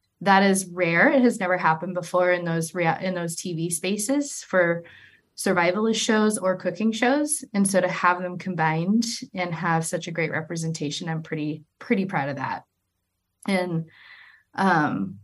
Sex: female